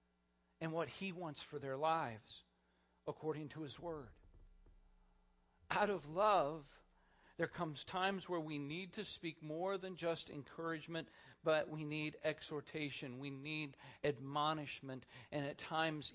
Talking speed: 135 wpm